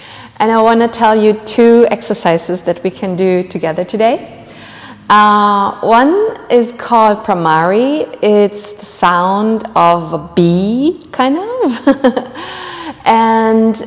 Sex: female